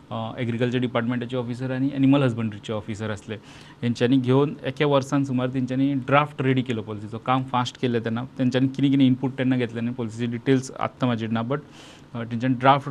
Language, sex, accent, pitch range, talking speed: English, male, Indian, 120-140 Hz, 105 wpm